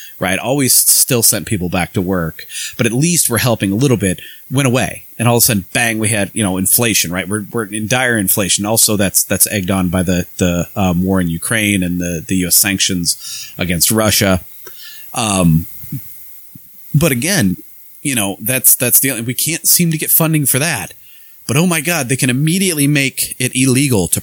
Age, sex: 30-49, male